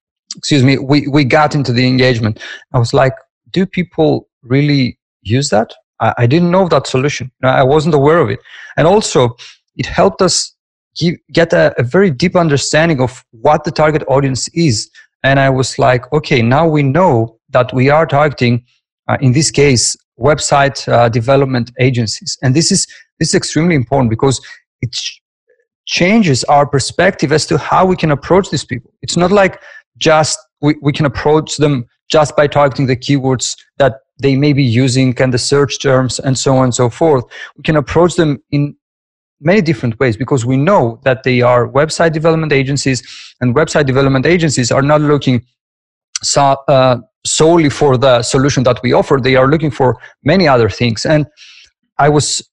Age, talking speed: 40-59, 180 wpm